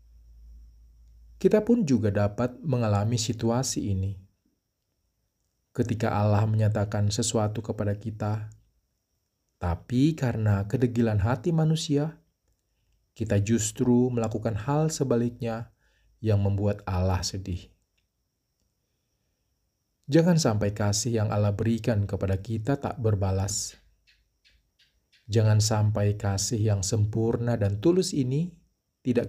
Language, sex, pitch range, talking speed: Indonesian, male, 95-120 Hz, 95 wpm